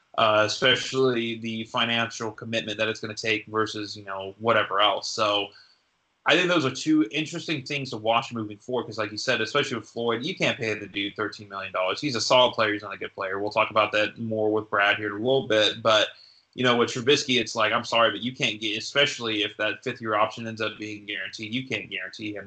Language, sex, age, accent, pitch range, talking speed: English, male, 20-39, American, 105-125 Hz, 235 wpm